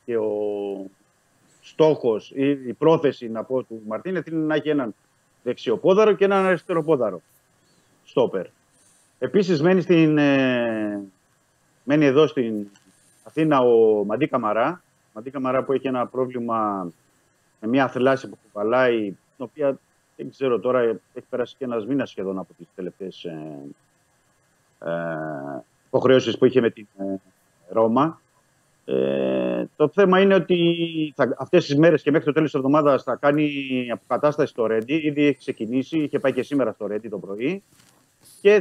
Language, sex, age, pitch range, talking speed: Greek, male, 50-69, 120-155 Hz, 145 wpm